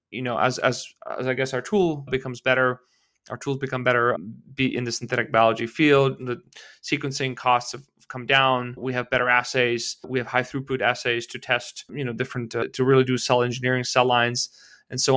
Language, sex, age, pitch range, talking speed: English, male, 30-49, 120-130 Hz, 200 wpm